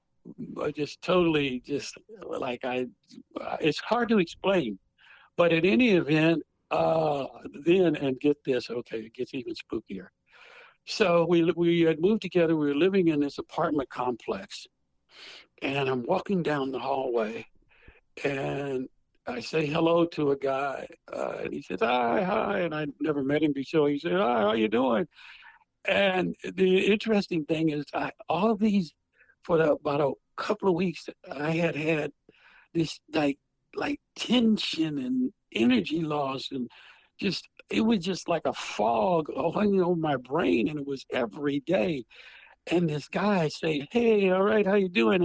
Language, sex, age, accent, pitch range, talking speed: English, male, 60-79, American, 145-195 Hz, 160 wpm